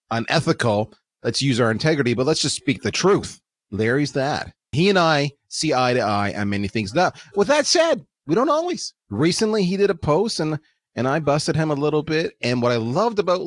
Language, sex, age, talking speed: English, male, 30-49, 215 wpm